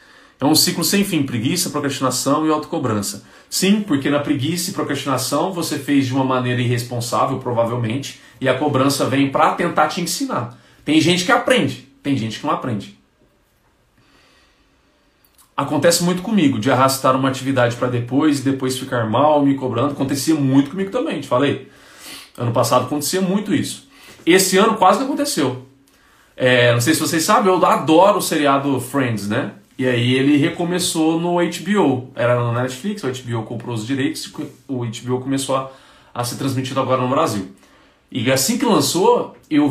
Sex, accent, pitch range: male, Brazilian, 125-160 Hz